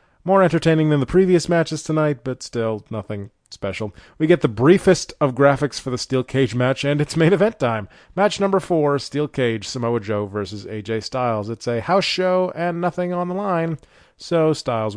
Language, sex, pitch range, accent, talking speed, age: English, male, 115-155 Hz, American, 190 wpm, 30-49